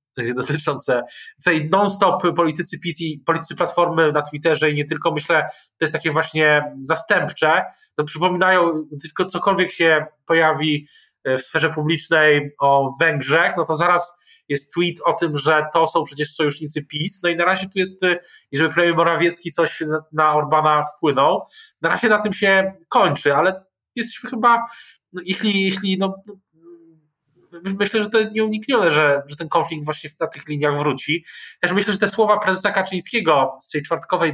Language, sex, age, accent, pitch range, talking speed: Polish, male, 20-39, native, 150-180 Hz, 165 wpm